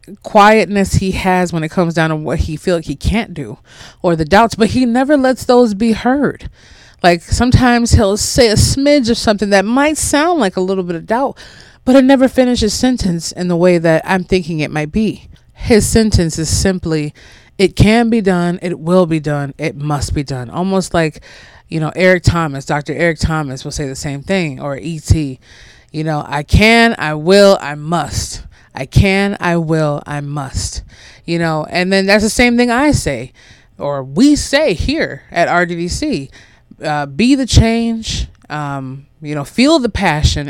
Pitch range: 150-220 Hz